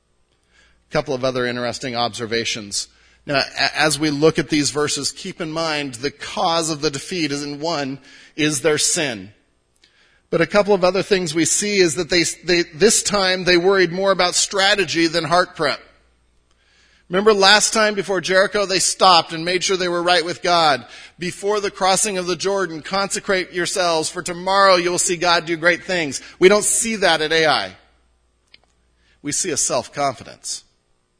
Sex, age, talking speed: male, 40-59, 170 wpm